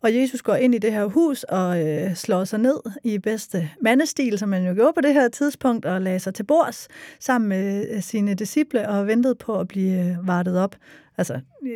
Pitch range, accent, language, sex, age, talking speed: 195-250 Hz, native, Danish, female, 40-59, 205 wpm